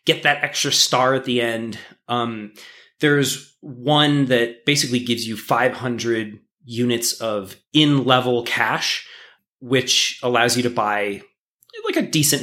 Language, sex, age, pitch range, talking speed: English, male, 20-39, 120-165 Hz, 135 wpm